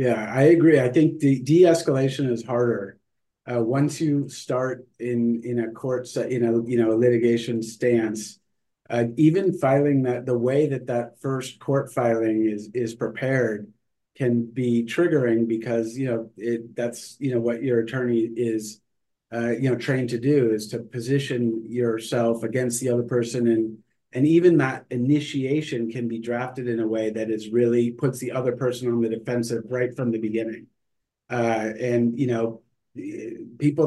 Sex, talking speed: male, 175 wpm